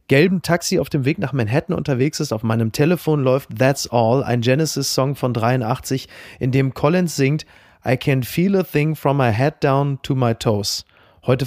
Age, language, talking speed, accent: 30-49, German, 190 wpm, German